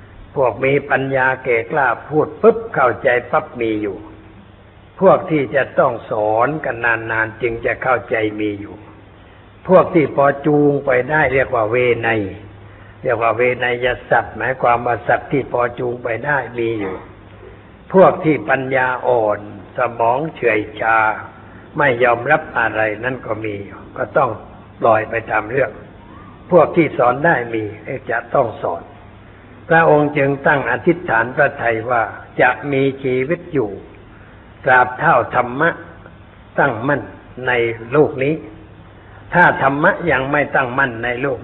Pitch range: 105-140 Hz